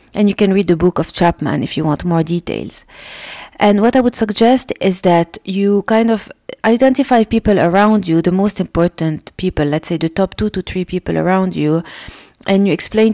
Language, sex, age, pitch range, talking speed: English, female, 30-49, 175-210 Hz, 200 wpm